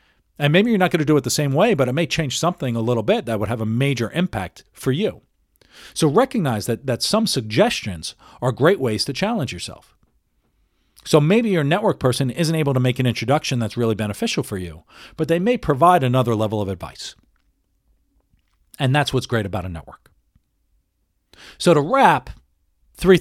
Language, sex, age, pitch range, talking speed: English, male, 40-59, 105-150 Hz, 190 wpm